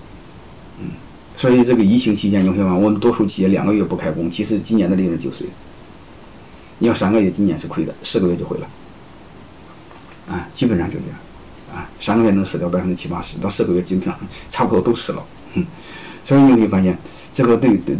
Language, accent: Chinese, native